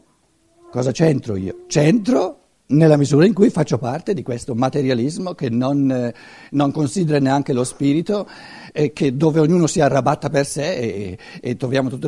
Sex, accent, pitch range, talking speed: male, native, 130-185 Hz, 160 wpm